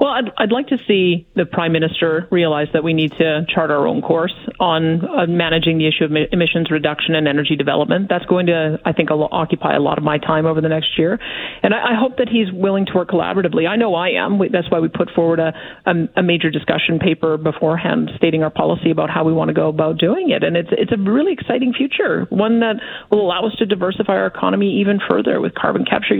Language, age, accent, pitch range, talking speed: English, 40-59, American, 160-200 Hz, 230 wpm